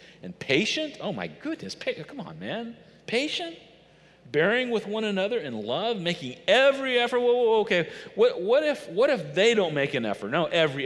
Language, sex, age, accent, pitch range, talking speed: English, male, 40-59, American, 140-210 Hz, 195 wpm